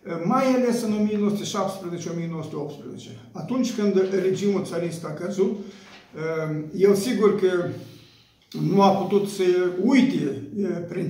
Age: 50-69